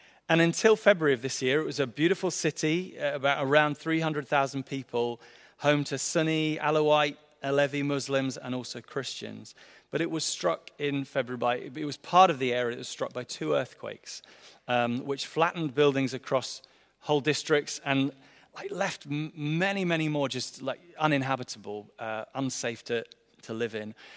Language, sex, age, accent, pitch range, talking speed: English, male, 30-49, British, 125-155 Hz, 160 wpm